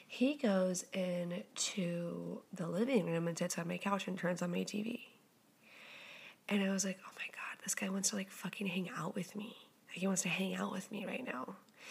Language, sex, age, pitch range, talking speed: English, female, 20-39, 190-225 Hz, 215 wpm